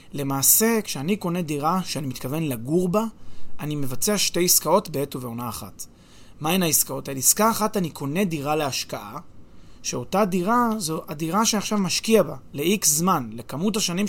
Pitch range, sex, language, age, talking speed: 135-195 Hz, male, Hebrew, 30-49, 155 wpm